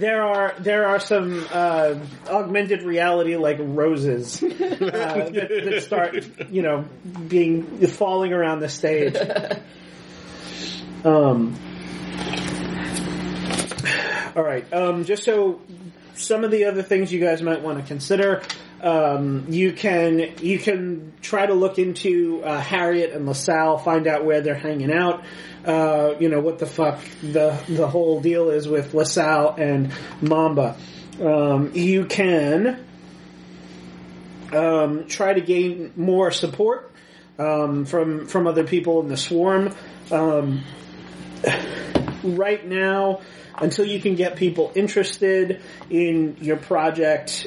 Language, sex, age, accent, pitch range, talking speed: English, male, 30-49, American, 150-185 Hz, 130 wpm